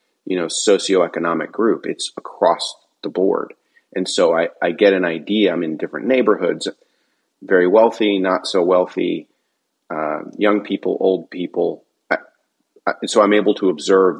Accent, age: American, 30-49